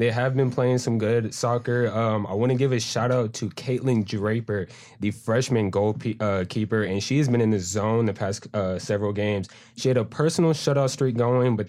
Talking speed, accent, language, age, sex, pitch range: 220 wpm, American, English, 20-39, male, 105-125 Hz